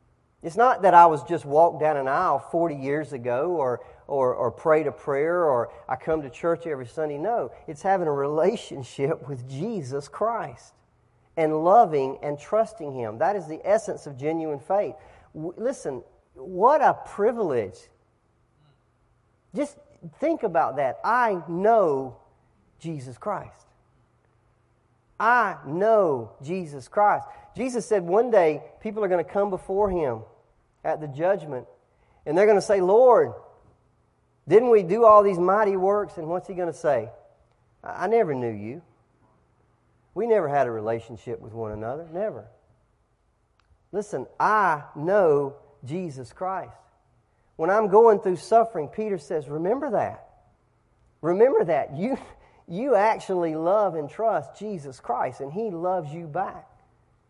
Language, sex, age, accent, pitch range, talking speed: English, male, 40-59, American, 130-200 Hz, 145 wpm